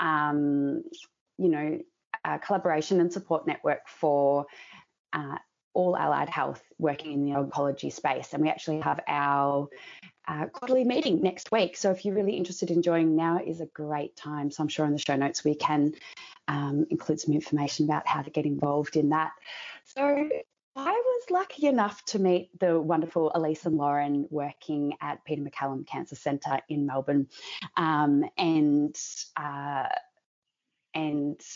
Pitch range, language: 145-175 Hz, English